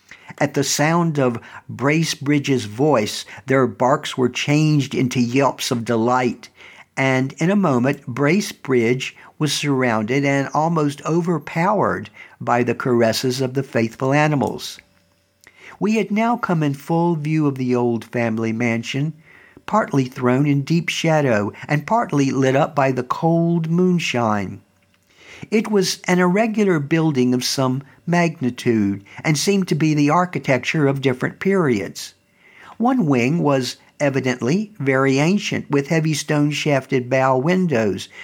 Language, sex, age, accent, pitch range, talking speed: English, male, 60-79, American, 125-160 Hz, 130 wpm